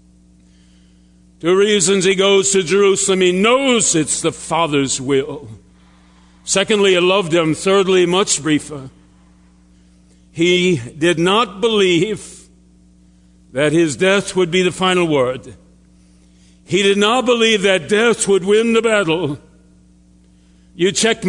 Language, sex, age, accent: English, male, 60-79, American